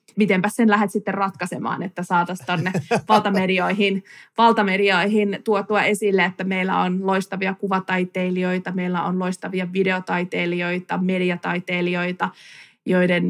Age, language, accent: 20-39, Finnish, native